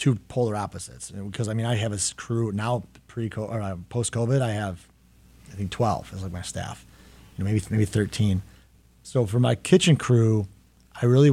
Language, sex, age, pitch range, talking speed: English, male, 30-49, 95-120 Hz, 190 wpm